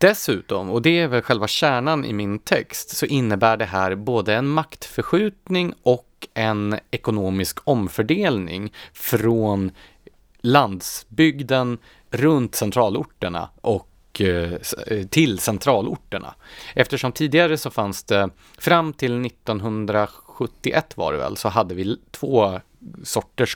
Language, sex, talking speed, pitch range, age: Swedish, male, 110 wpm, 100-135 Hz, 30-49